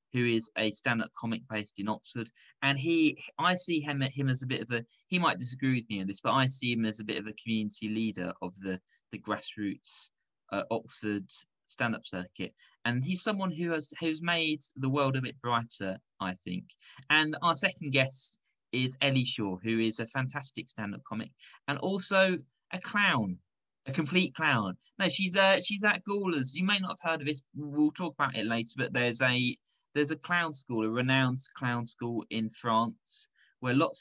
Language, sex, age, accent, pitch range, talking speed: English, male, 20-39, British, 110-155 Hz, 200 wpm